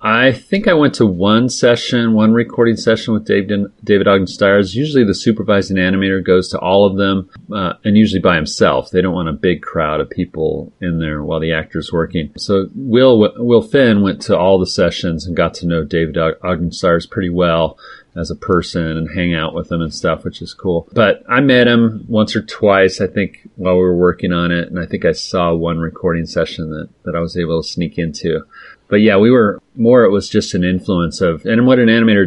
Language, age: English, 30-49